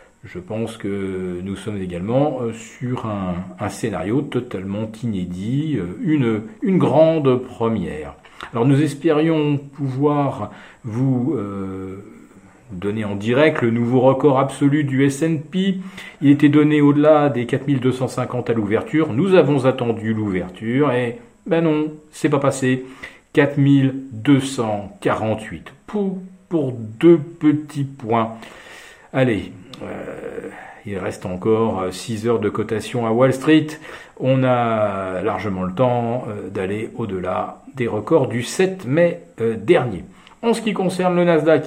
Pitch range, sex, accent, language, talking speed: 110-150 Hz, male, French, French, 120 wpm